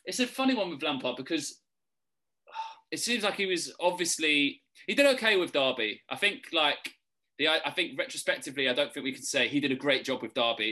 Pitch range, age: 115-190 Hz, 20-39